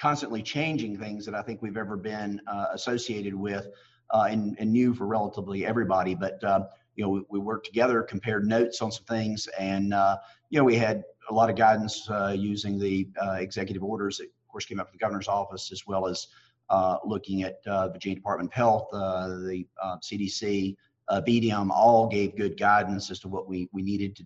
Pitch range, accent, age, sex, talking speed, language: 95-115 Hz, American, 40-59, male, 215 wpm, English